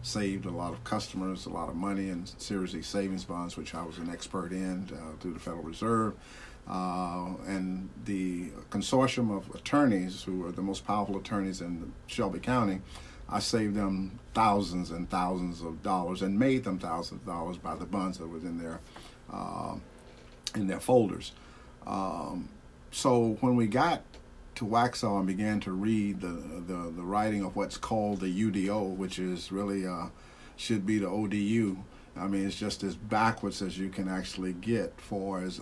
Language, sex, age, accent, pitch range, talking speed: English, male, 50-69, American, 90-105 Hz, 175 wpm